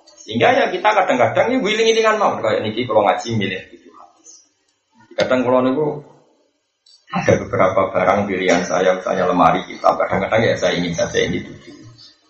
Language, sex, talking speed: Indonesian, male, 180 wpm